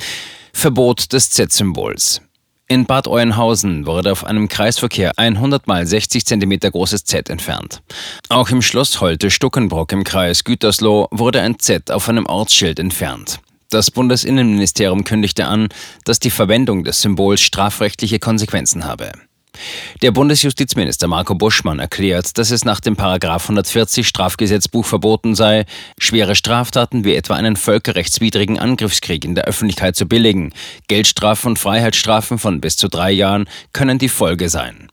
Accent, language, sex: German, German, male